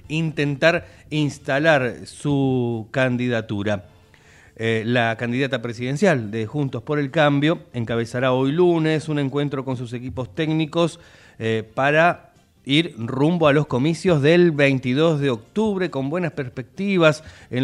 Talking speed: 125 wpm